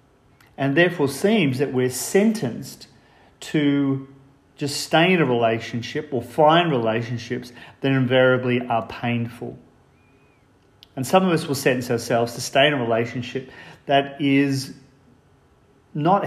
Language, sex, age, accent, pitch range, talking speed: English, male, 40-59, Australian, 120-145 Hz, 125 wpm